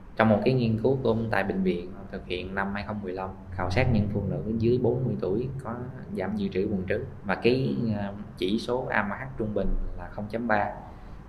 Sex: male